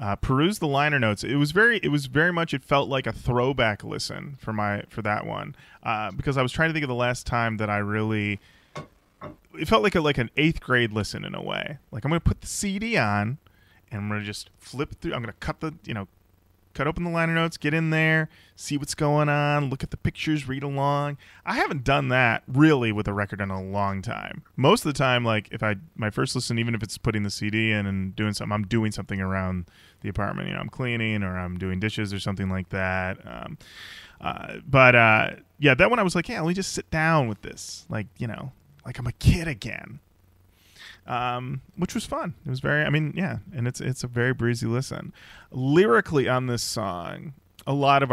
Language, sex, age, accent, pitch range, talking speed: English, male, 20-39, American, 105-150 Hz, 230 wpm